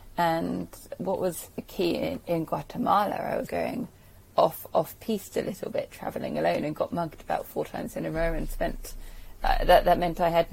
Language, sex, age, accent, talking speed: English, female, 30-49, British, 205 wpm